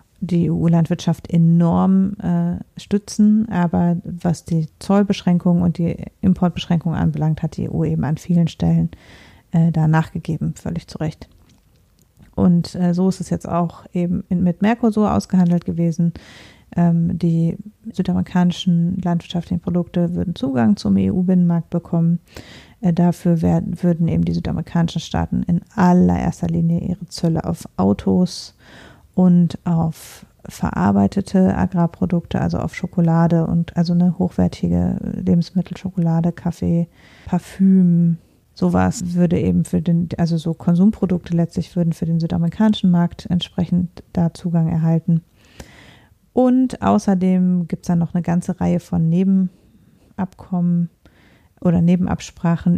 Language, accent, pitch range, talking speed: German, German, 165-180 Hz, 125 wpm